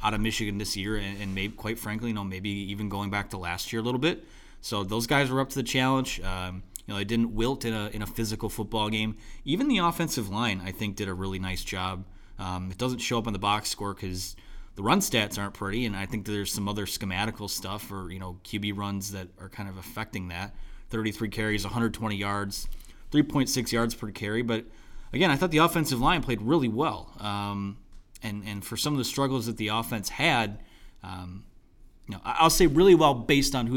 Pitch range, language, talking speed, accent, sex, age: 100-115 Hz, English, 225 wpm, American, male, 30-49